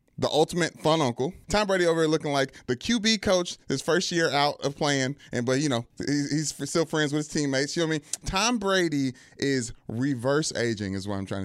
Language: English